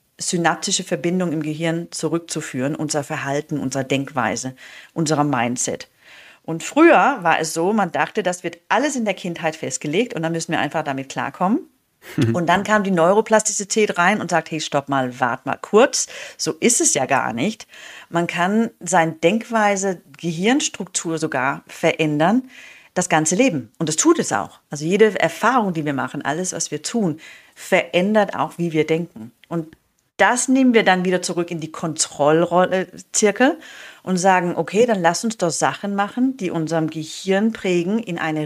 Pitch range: 155-205 Hz